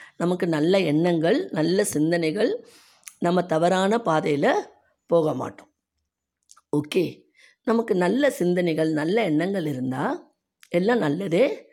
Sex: female